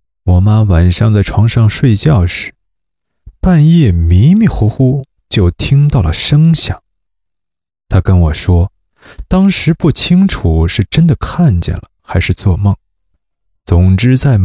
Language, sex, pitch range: Chinese, male, 85-130 Hz